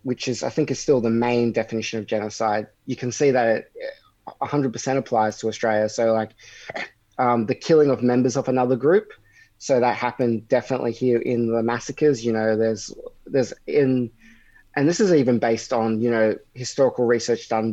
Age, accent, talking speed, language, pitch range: 20-39, Australian, 180 wpm, English, 110-135 Hz